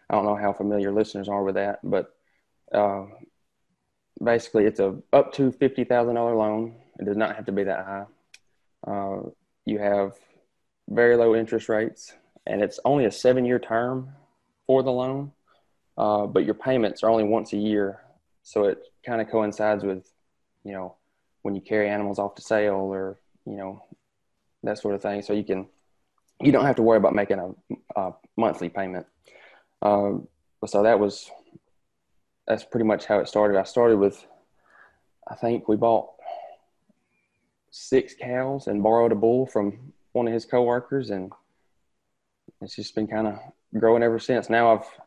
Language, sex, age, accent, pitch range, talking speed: English, male, 20-39, American, 100-120 Hz, 170 wpm